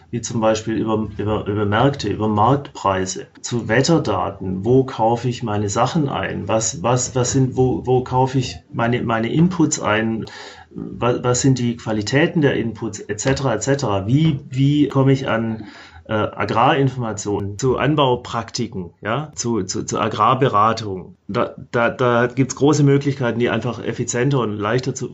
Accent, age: German, 30-49